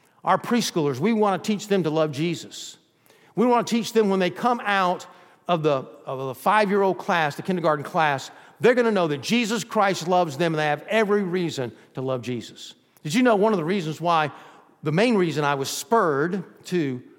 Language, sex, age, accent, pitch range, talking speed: English, male, 50-69, American, 155-210 Hz, 205 wpm